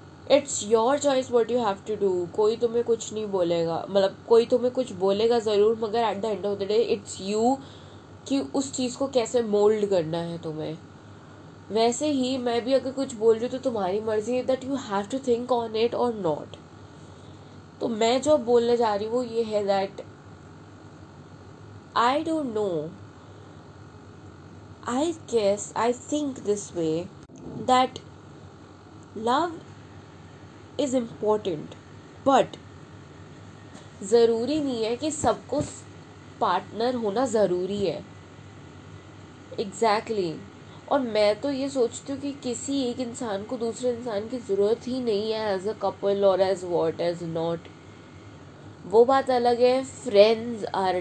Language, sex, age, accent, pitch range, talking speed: Hindi, female, 20-39, native, 195-250 Hz, 150 wpm